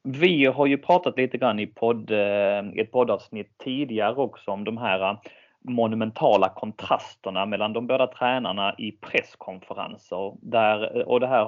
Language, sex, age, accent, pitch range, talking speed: Swedish, male, 30-49, native, 105-130 Hz, 145 wpm